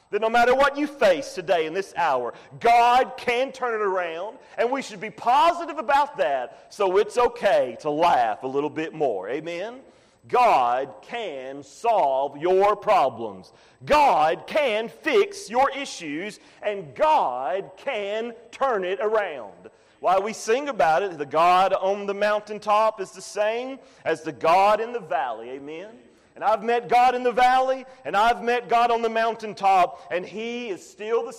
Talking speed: 165 wpm